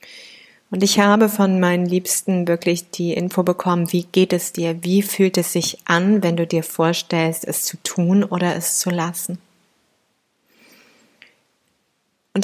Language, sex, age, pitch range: German, female, 30-49, 170-200 Hz